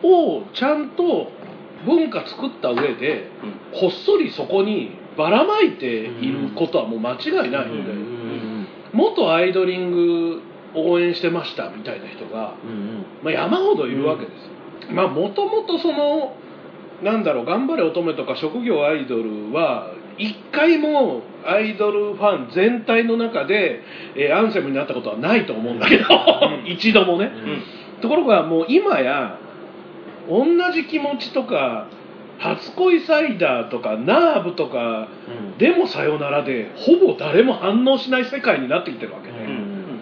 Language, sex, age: Japanese, male, 40-59